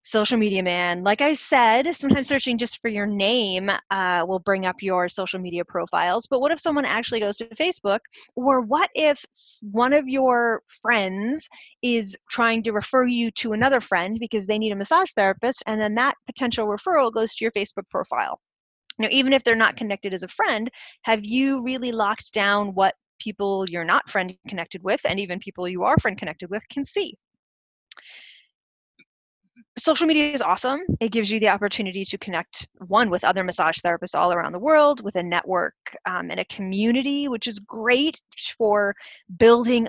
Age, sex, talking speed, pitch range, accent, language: 30-49, female, 180 wpm, 190-240 Hz, American, English